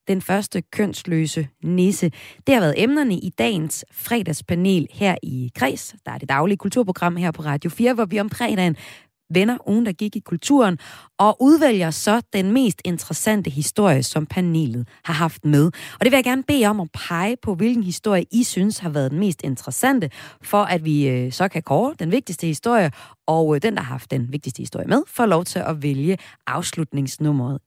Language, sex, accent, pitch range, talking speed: Danish, female, native, 155-220 Hz, 190 wpm